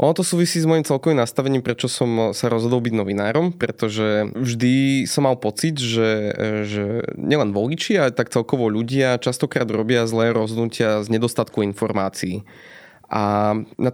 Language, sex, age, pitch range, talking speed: Slovak, male, 20-39, 110-130 Hz, 150 wpm